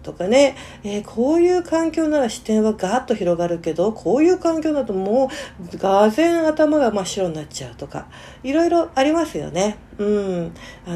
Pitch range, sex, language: 170-245 Hz, female, Japanese